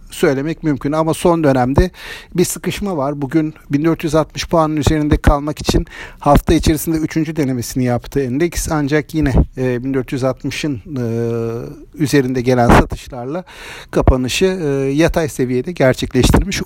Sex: male